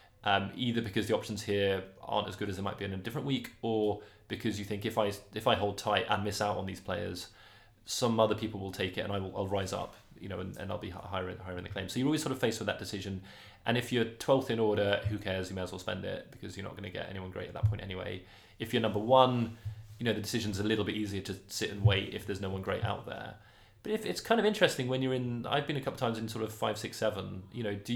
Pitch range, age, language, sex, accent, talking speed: 100-120 Hz, 20-39, English, male, British, 290 wpm